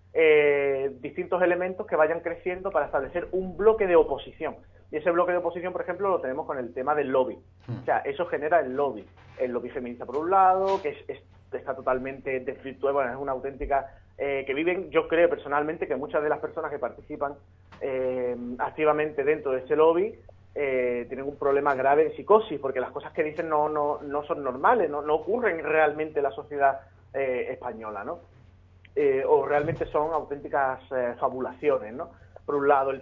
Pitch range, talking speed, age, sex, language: 130-170 Hz, 195 wpm, 30-49, male, Spanish